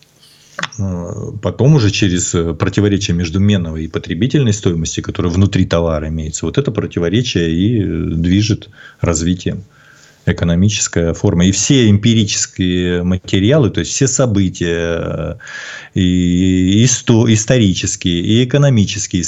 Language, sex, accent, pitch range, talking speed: Russian, male, native, 85-105 Hz, 100 wpm